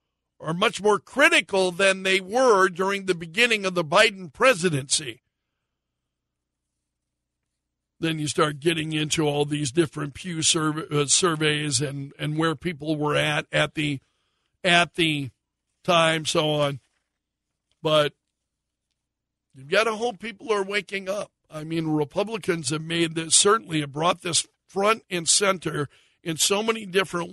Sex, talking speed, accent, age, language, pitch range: male, 135 wpm, American, 60-79, English, 150-195 Hz